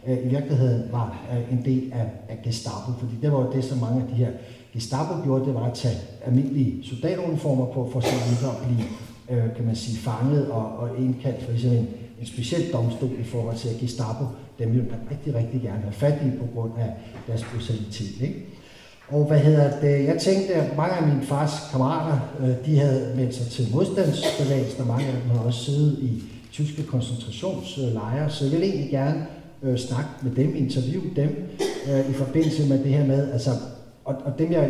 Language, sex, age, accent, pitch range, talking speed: Danish, male, 60-79, native, 120-145 Hz, 195 wpm